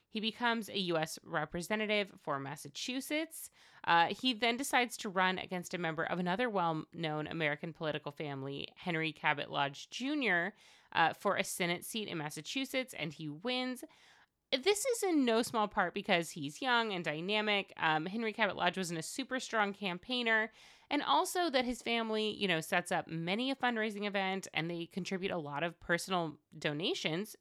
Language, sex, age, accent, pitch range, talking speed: English, female, 30-49, American, 170-250 Hz, 170 wpm